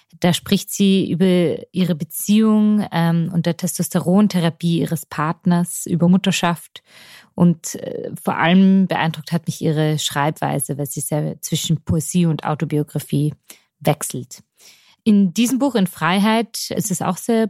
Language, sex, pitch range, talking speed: German, female, 170-200 Hz, 135 wpm